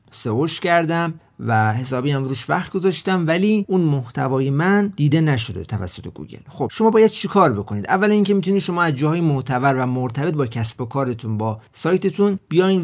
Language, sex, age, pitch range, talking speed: Persian, male, 40-59, 120-160 Hz, 180 wpm